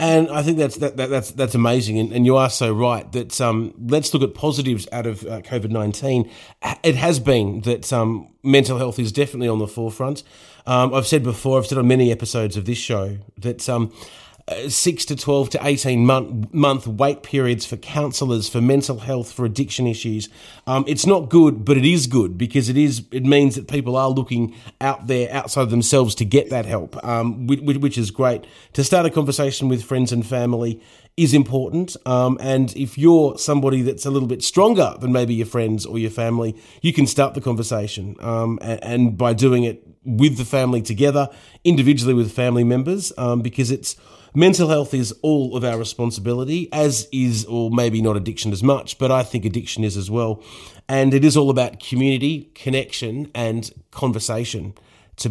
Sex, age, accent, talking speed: male, 30-49, Australian, 195 wpm